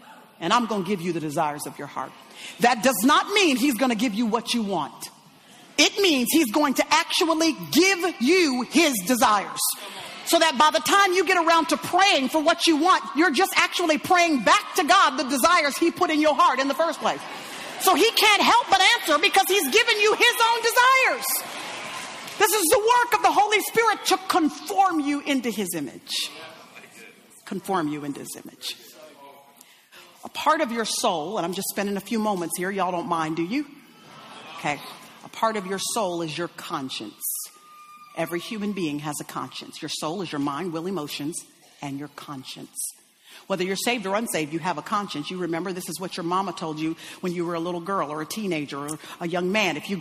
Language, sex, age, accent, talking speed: English, female, 40-59, American, 210 wpm